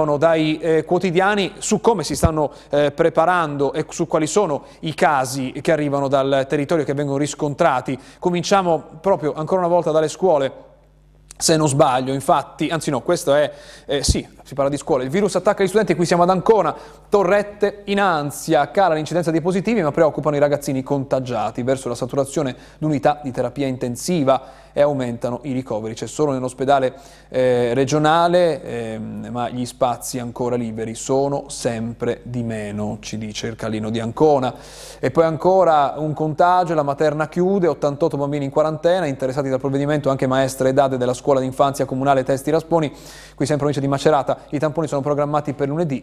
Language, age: Italian, 30-49